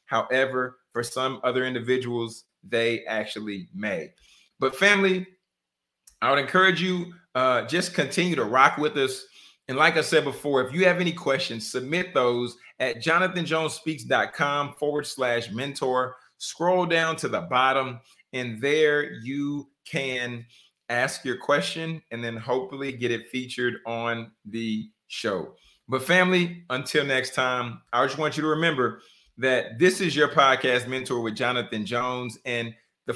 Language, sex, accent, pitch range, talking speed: English, male, American, 120-155 Hz, 145 wpm